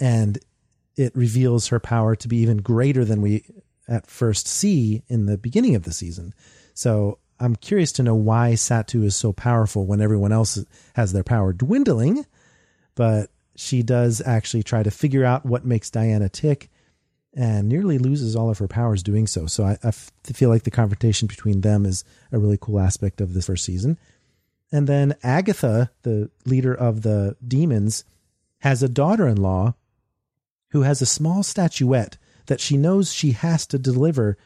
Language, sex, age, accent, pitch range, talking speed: English, male, 40-59, American, 105-135 Hz, 170 wpm